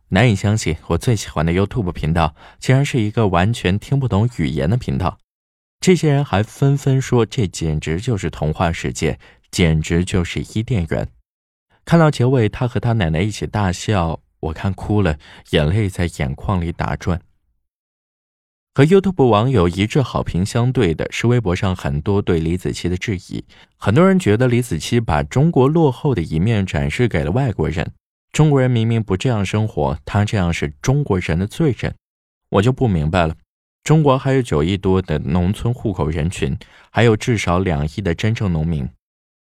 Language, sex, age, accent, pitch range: Chinese, male, 20-39, native, 80-120 Hz